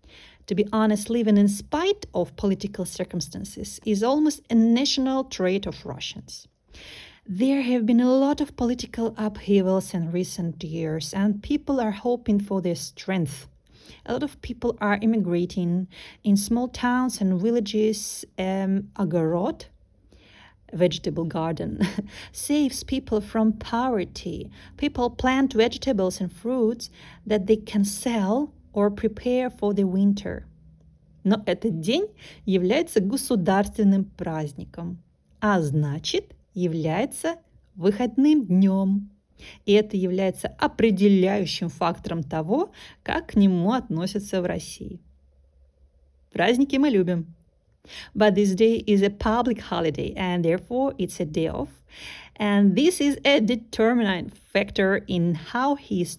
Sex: female